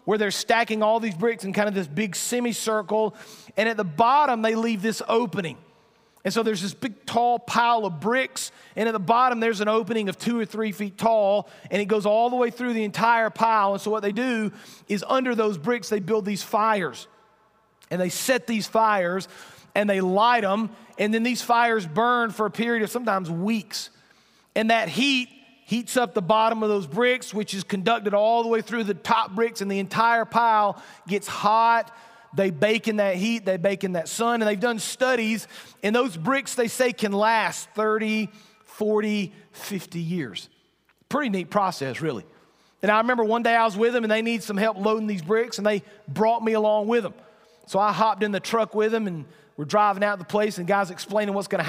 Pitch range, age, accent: 200-230 Hz, 40-59, American